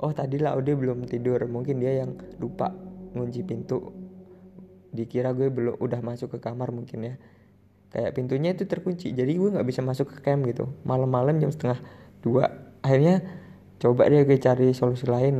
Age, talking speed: 20-39, 170 wpm